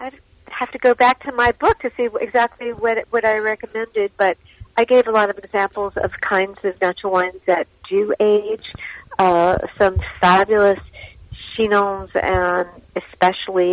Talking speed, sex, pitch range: 155 wpm, female, 175-215 Hz